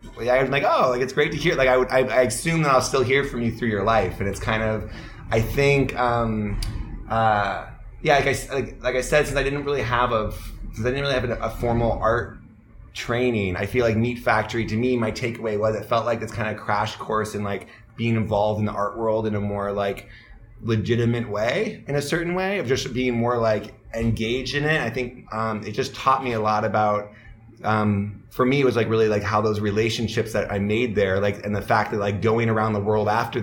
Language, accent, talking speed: Czech, American, 245 wpm